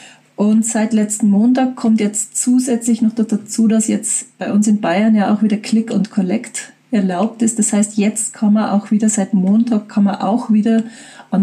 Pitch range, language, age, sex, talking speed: 210-240 Hz, German, 40-59, female, 195 wpm